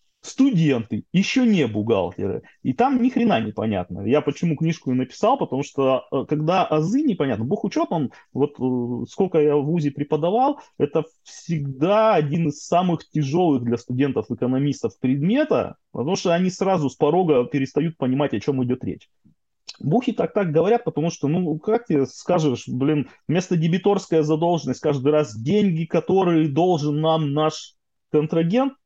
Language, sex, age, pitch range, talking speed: Russian, male, 20-39, 140-180 Hz, 145 wpm